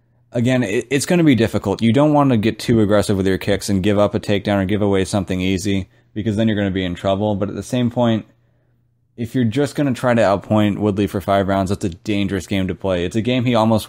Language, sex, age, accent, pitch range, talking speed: English, male, 20-39, American, 95-115 Hz, 270 wpm